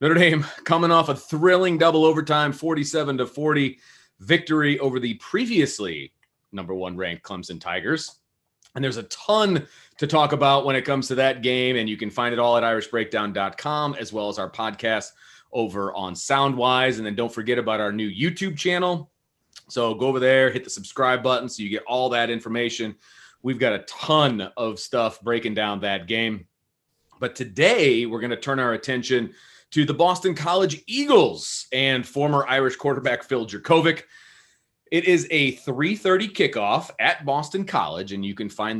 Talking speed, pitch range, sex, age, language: 170 wpm, 115-150 Hz, male, 30-49, English